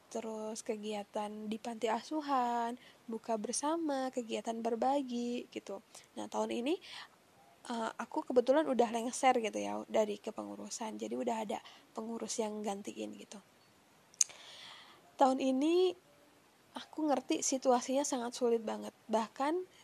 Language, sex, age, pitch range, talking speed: Indonesian, female, 10-29, 225-260 Hz, 110 wpm